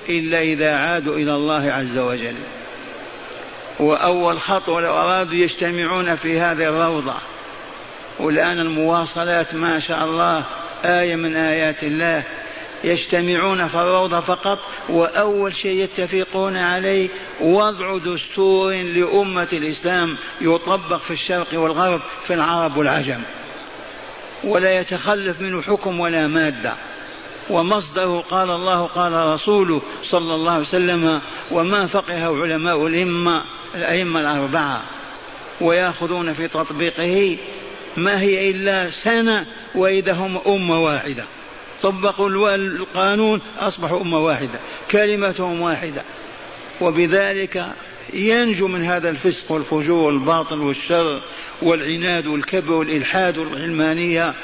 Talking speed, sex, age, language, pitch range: 100 wpm, male, 50-69, Arabic, 160-190 Hz